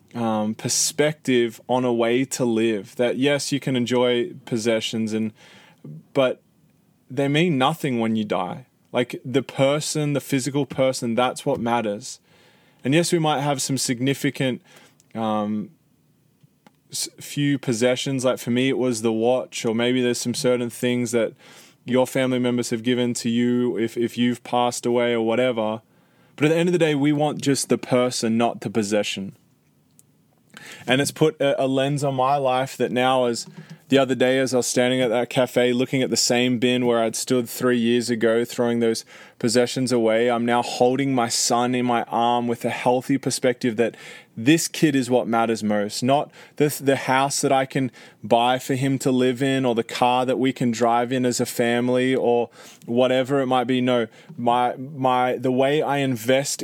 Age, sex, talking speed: 20-39, male, 185 wpm